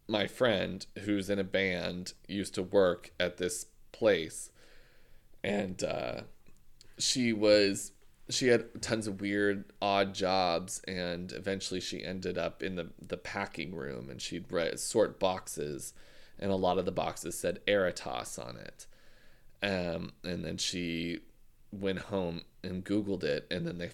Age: 20-39